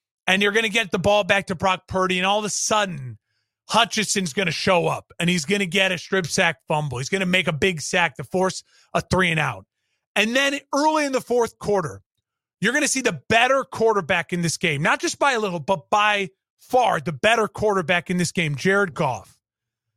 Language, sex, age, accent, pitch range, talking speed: English, male, 30-49, American, 175-225 Hz, 225 wpm